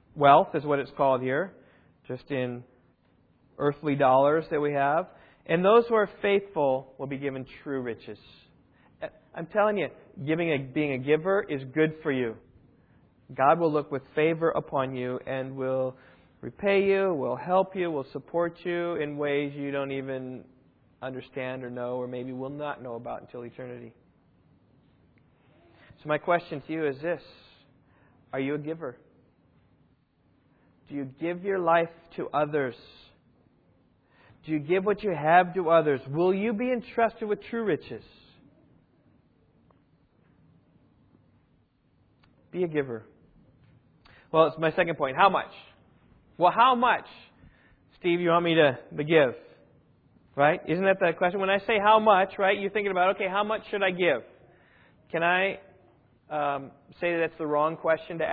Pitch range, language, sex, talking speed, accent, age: 135-180 Hz, English, male, 155 wpm, American, 40-59